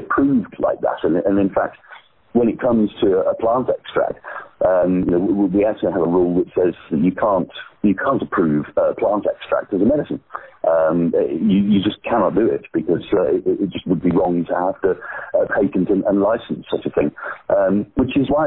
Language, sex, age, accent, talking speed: English, male, 50-69, British, 195 wpm